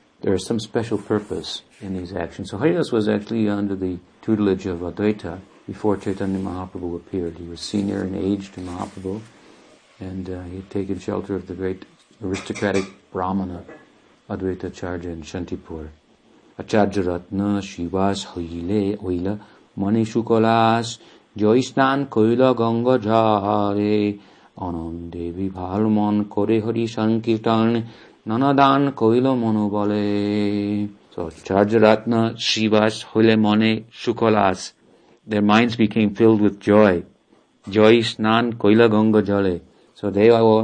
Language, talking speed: English, 110 wpm